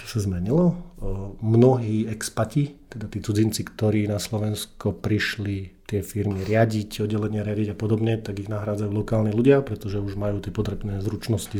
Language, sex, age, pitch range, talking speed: Slovak, male, 40-59, 105-120 Hz, 155 wpm